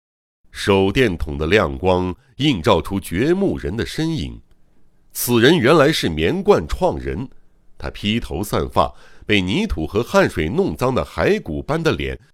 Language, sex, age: Chinese, male, 60-79